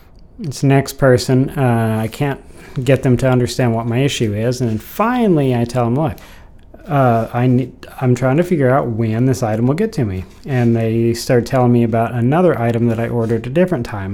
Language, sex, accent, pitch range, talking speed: English, male, American, 110-135 Hz, 210 wpm